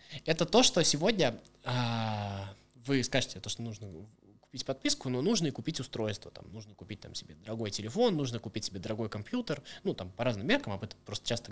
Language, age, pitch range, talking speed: Russian, 20-39, 115-150 Hz, 195 wpm